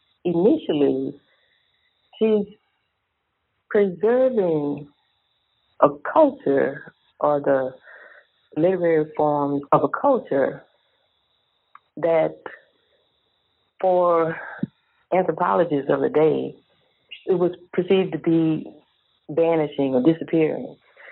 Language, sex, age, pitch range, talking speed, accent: English, female, 60-79, 140-180 Hz, 75 wpm, American